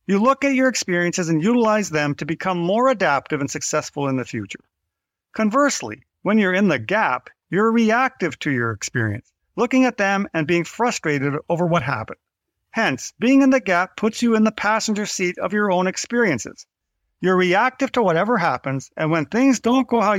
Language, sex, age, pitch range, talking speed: English, male, 50-69, 150-230 Hz, 185 wpm